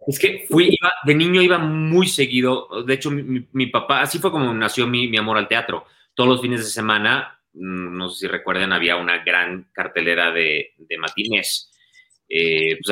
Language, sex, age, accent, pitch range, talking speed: Spanish, male, 30-49, Mexican, 95-135 Hz, 195 wpm